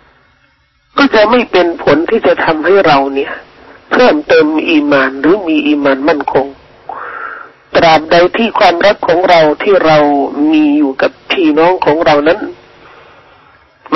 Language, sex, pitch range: Thai, male, 150-210 Hz